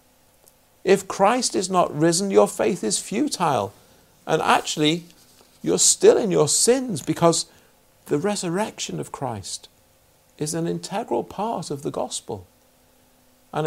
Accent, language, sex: British, English, male